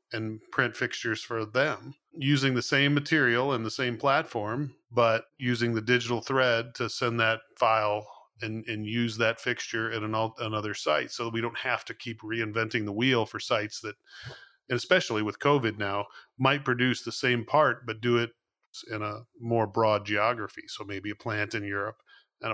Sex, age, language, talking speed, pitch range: male, 40-59, English, 180 wpm, 105-125 Hz